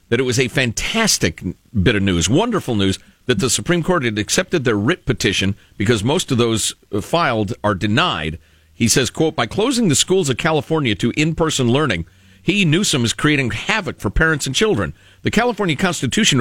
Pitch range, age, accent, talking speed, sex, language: 95-145 Hz, 50-69, American, 185 wpm, male, English